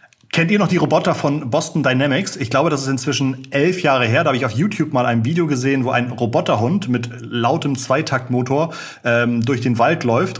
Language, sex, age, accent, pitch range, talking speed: German, male, 30-49, German, 115-140 Hz, 210 wpm